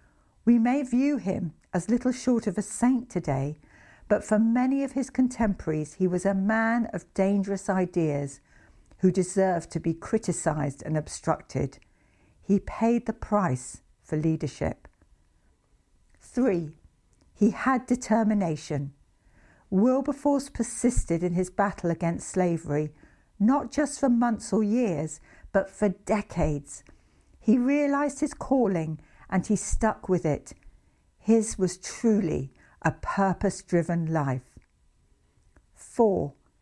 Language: English